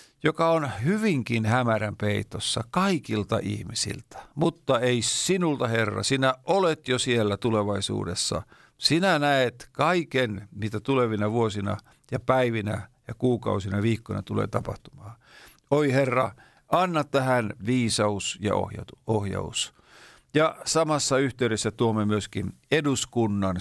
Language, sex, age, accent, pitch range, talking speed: Finnish, male, 50-69, native, 100-130 Hz, 110 wpm